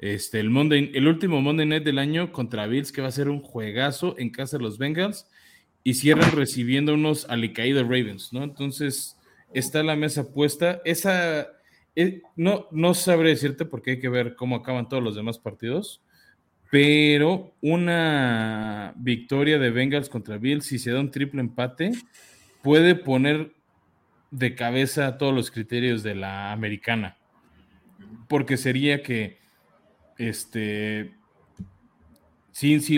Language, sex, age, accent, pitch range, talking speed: Spanish, male, 20-39, Mexican, 115-150 Hz, 140 wpm